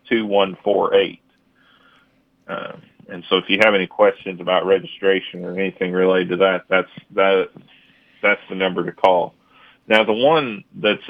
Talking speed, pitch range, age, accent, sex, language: 140 wpm, 95-110 Hz, 40-59, American, male, English